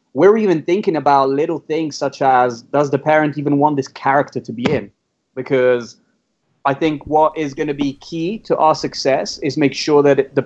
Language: English